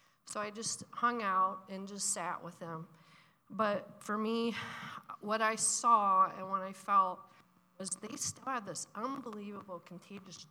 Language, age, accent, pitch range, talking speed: English, 40-59, American, 185-225 Hz, 155 wpm